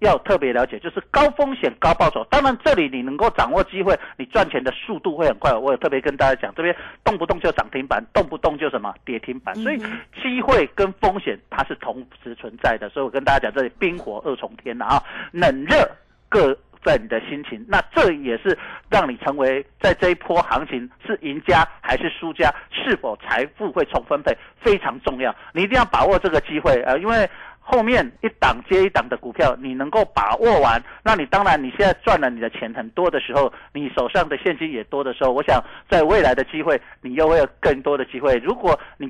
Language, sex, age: Chinese, male, 50-69